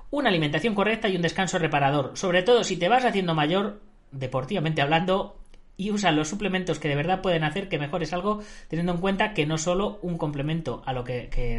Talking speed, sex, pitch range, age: 205 wpm, female, 140-185 Hz, 30-49